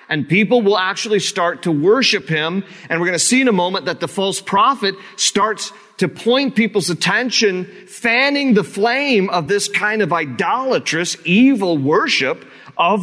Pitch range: 145-210 Hz